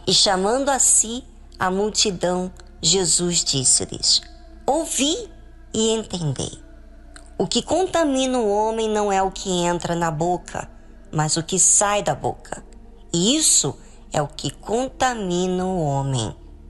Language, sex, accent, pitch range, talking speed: Portuguese, male, Brazilian, 135-210 Hz, 130 wpm